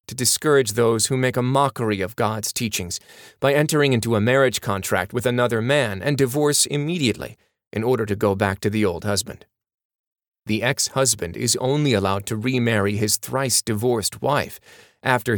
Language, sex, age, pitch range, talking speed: English, male, 30-49, 105-135 Hz, 160 wpm